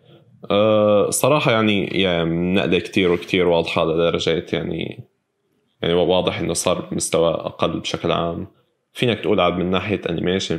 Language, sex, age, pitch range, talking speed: Arabic, male, 20-39, 85-100 Hz, 135 wpm